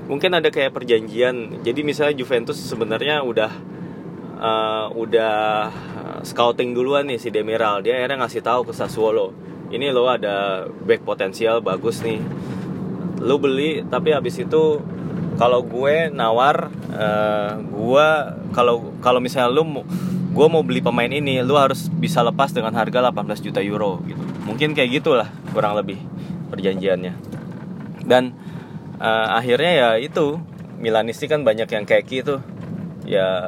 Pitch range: 115-175 Hz